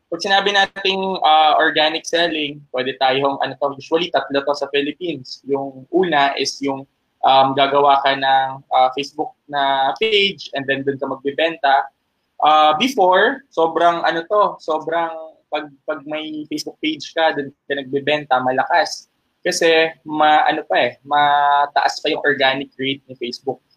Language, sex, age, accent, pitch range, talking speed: English, male, 20-39, Filipino, 135-165 Hz, 150 wpm